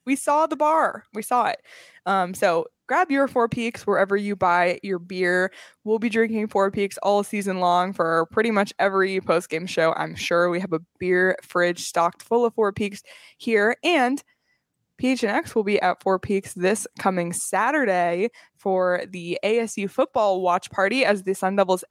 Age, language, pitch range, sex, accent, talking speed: 20-39, English, 185-230 Hz, female, American, 180 wpm